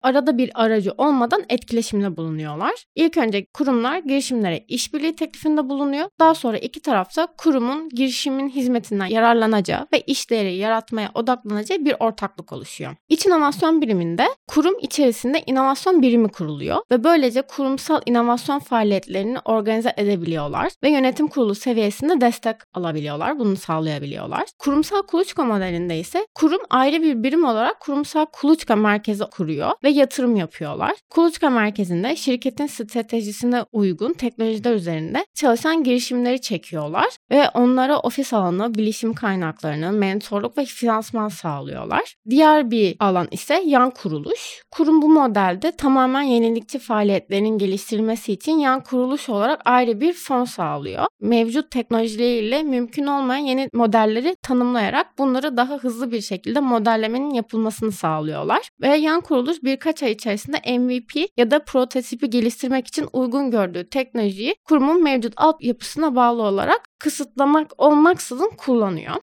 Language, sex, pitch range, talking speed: Turkish, female, 220-290 Hz, 125 wpm